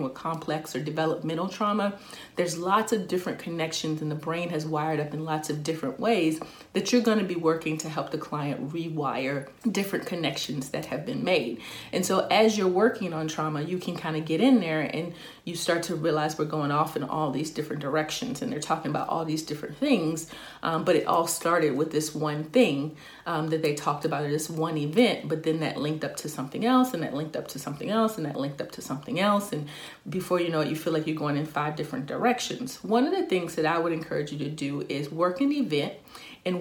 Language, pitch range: English, 155-185 Hz